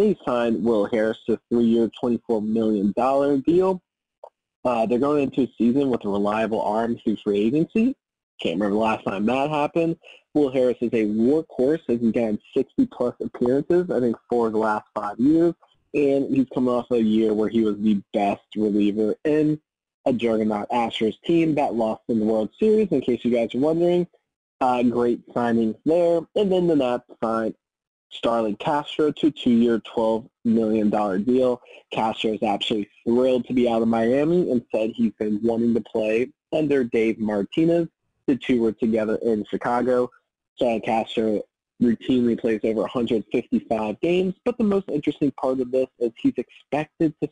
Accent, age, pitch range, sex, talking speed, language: American, 20-39, 110-145 Hz, male, 170 wpm, English